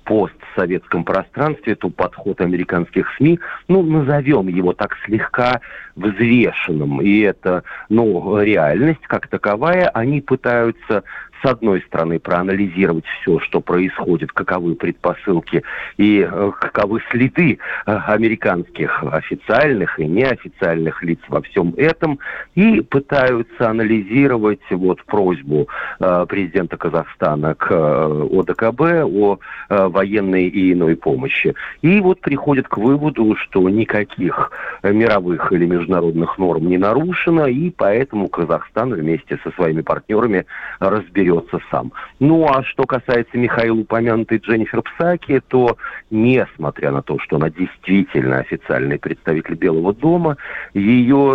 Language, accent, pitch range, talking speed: Russian, native, 90-130 Hz, 110 wpm